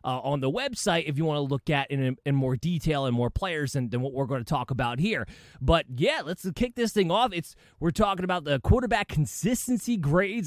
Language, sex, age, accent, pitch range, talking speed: English, male, 20-39, American, 135-185 Hz, 235 wpm